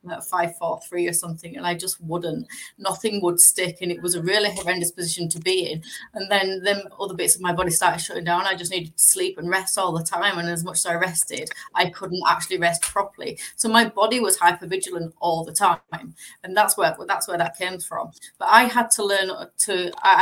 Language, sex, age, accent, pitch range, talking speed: English, female, 20-39, British, 165-200 Hz, 225 wpm